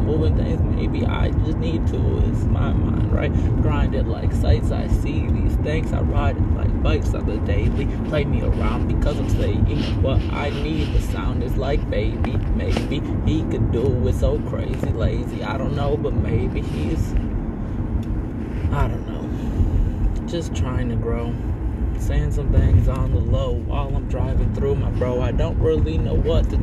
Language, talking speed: English, 180 wpm